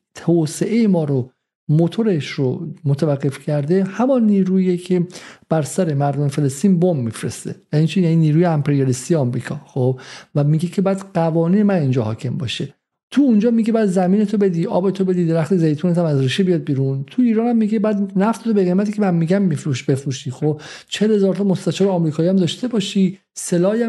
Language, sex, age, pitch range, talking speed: Persian, male, 50-69, 150-195 Hz, 185 wpm